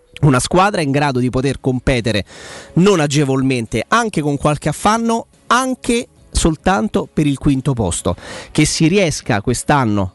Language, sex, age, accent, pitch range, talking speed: Italian, male, 30-49, native, 135-175 Hz, 135 wpm